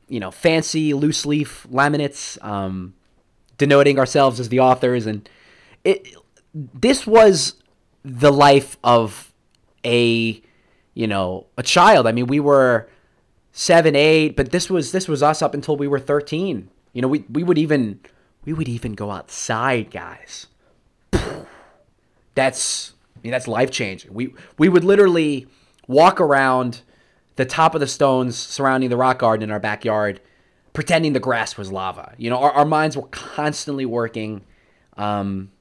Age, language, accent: 30-49, English, American